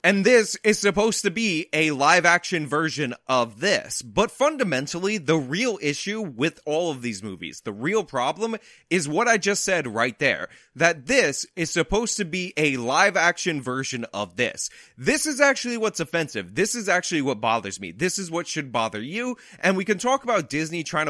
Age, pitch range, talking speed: 20-39, 130-185 Hz, 190 wpm